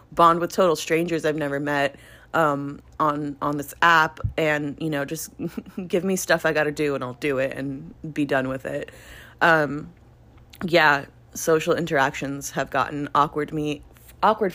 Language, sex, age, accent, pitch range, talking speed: English, female, 30-49, American, 145-170 Hz, 165 wpm